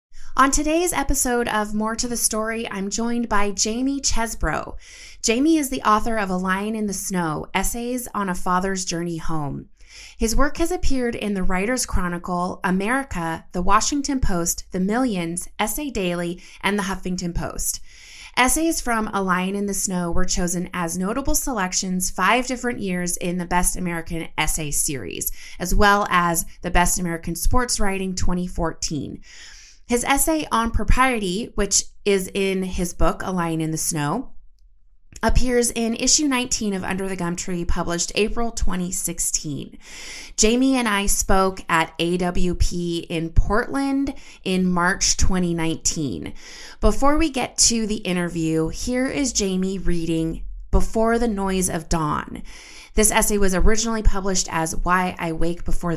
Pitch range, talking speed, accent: 175-230 Hz, 150 wpm, American